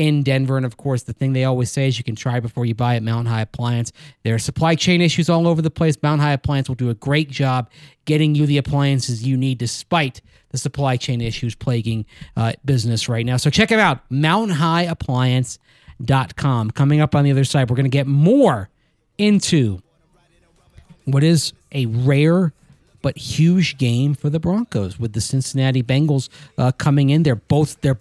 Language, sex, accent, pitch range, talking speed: English, male, American, 125-155 Hz, 195 wpm